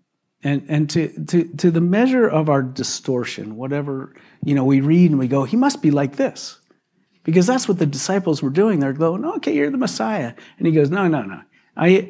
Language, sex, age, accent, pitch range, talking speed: English, male, 50-69, American, 130-175 Hz, 215 wpm